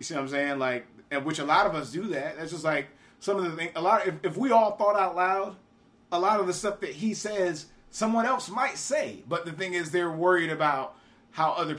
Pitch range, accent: 140-185 Hz, American